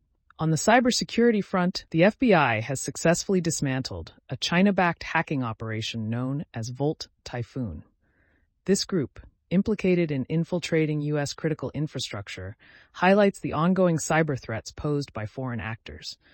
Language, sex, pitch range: English, female, 115-165 Hz